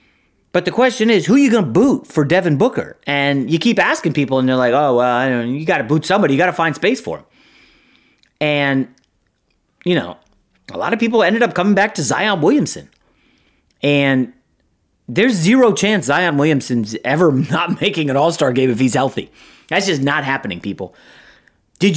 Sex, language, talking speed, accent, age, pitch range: male, English, 200 wpm, American, 30-49, 130-185 Hz